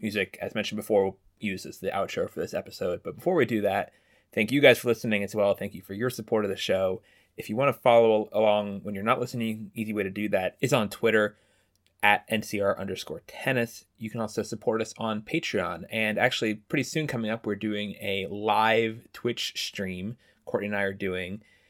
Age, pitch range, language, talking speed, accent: 20-39, 100-115 Hz, English, 215 wpm, American